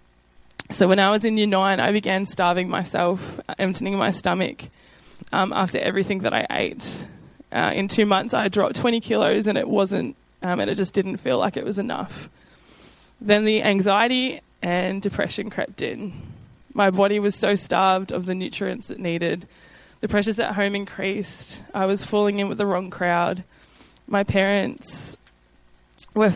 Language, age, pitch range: English, 10-29, 165-200 Hz